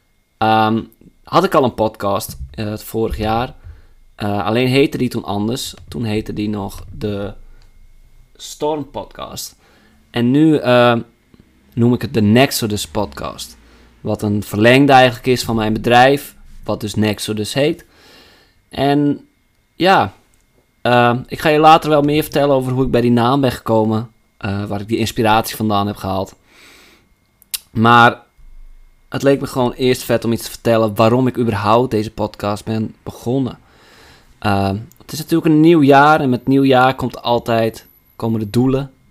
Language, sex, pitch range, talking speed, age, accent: Dutch, male, 105-130 Hz, 160 wpm, 20-39, Dutch